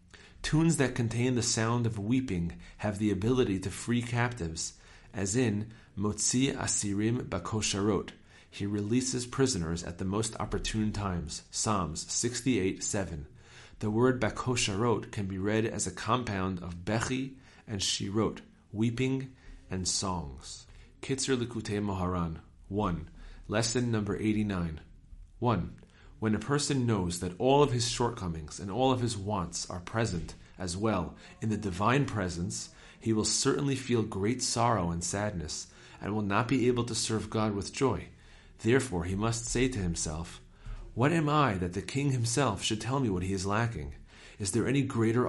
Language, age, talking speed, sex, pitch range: English, 40-59, 160 wpm, male, 90-120 Hz